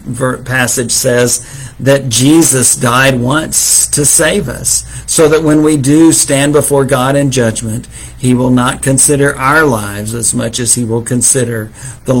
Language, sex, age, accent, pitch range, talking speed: English, male, 50-69, American, 120-155 Hz, 155 wpm